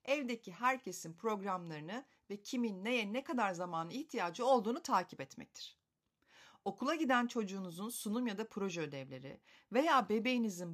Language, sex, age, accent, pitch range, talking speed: Turkish, female, 40-59, native, 185-260 Hz, 130 wpm